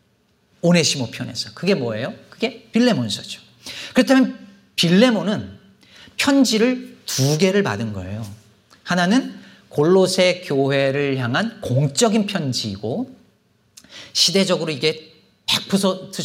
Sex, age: male, 40-59